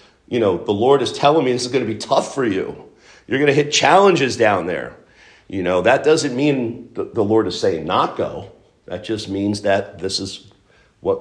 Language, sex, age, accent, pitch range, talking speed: English, male, 50-69, American, 100-130 Hz, 215 wpm